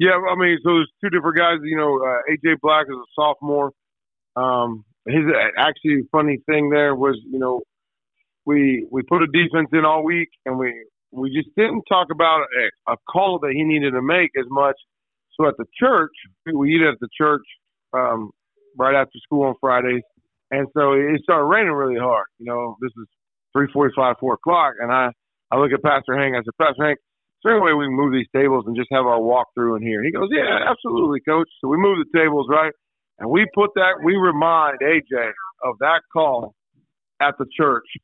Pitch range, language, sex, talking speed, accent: 125-155 Hz, English, male, 205 wpm, American